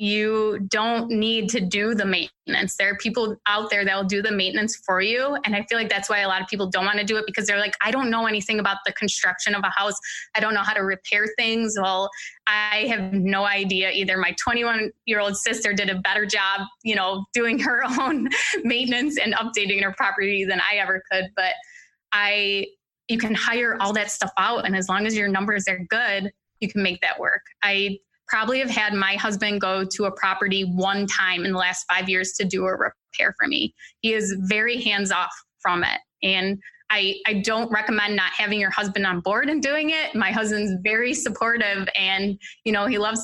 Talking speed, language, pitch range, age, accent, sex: 220 wpm, English, 195-230 Hz, 20-39, American, female